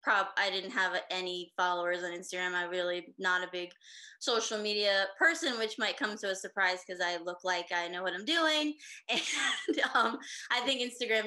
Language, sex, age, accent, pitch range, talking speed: English, female, 20-39, American, 185-240 Hz, 190 wpm